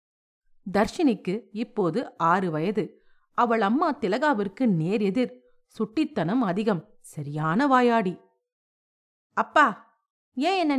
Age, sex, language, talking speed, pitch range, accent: 50-69, female, Tamil, 90 wpm, 195-265 Hz, native